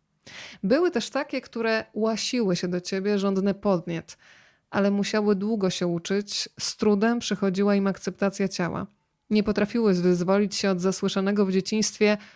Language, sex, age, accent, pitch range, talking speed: Polish, female, 20-39, native, 190-220 Hz, 140 wpm